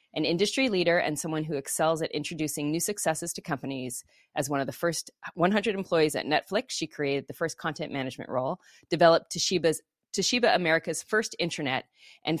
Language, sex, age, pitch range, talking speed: English, female, 30-49, 145-185 Hz, 175 wpm